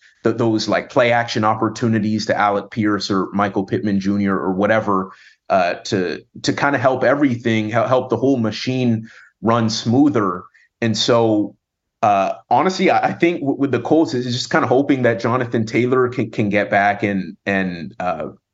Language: English